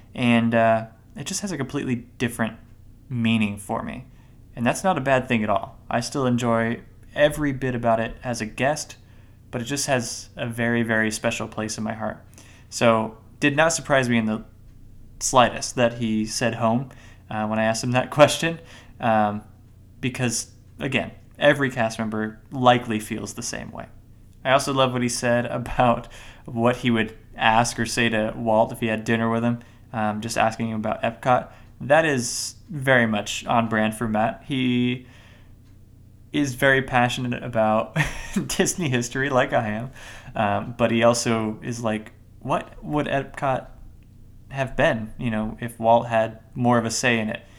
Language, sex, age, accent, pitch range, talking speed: English, male, 20-39, American, 110-125 Hz, 175 wpm